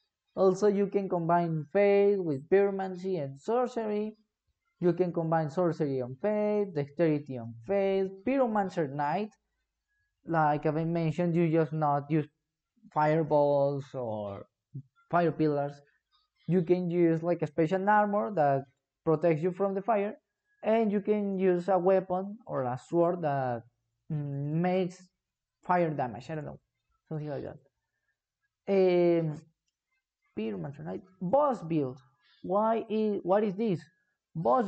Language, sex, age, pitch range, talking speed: English, male, 20-39, 150-200 Hz, 130 wpm